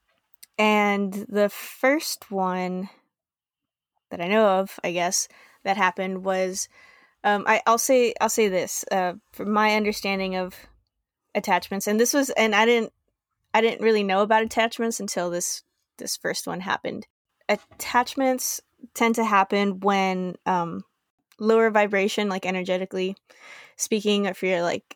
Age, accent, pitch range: 20-39, American, 185-225 Hz